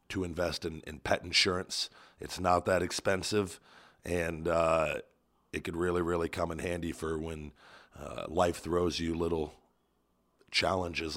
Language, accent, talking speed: English, American, 145 wpm